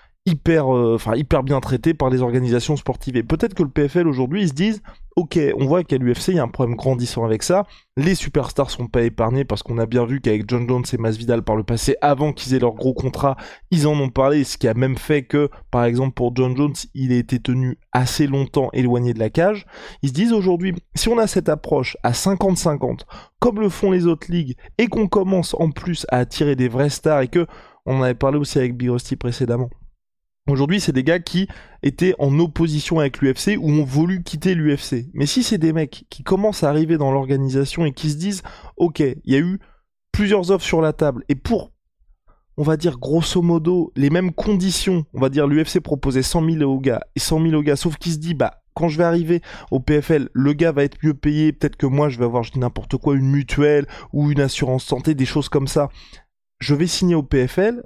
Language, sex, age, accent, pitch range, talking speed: French, male, 20-39, French, 130-170 Hz, 230 wpm